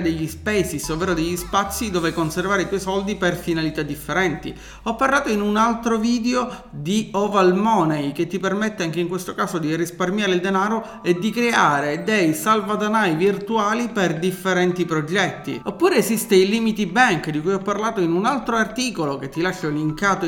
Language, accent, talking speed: Italian, native, 175 wpm